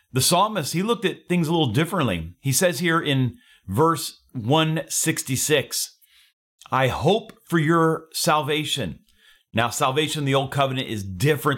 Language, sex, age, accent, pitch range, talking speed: English, male, 40-59, American, 120-155 Hz, 145 wpm